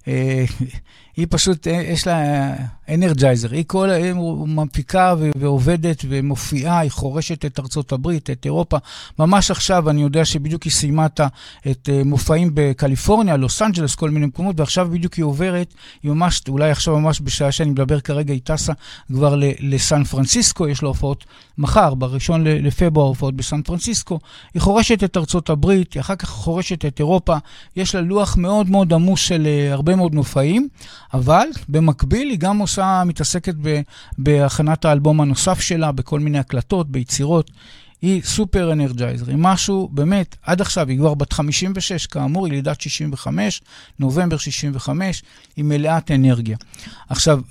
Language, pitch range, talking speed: Hebrew, 140-180 Hz, 150 wpm